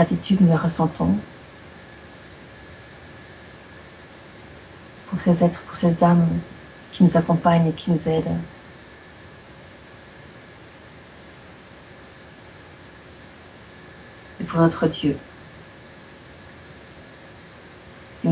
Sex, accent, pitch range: female, French, 150-175 Hz